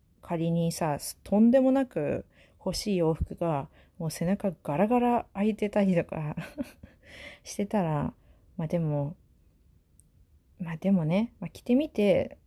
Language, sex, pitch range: Japanese, female, 155-210 Hz